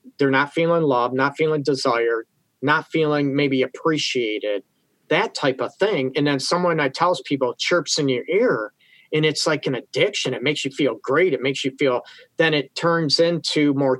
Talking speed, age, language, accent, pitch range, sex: 190 wpm, 40-59, English, American, 135-175 Hz, male